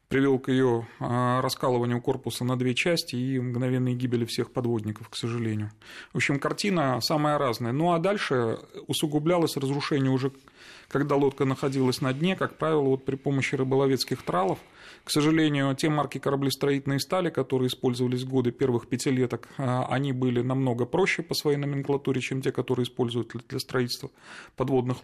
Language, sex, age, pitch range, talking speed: Russian, male, 30-49, 125-145 Hz, 155 wpm